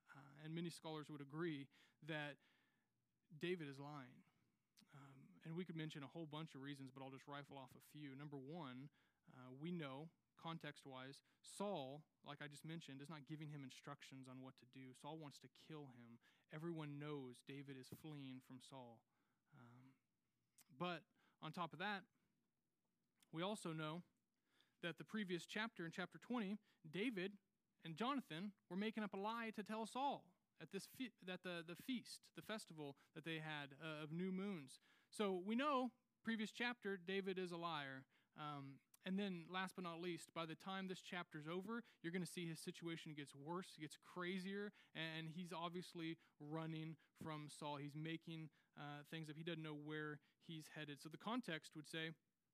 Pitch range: 145-185 Hz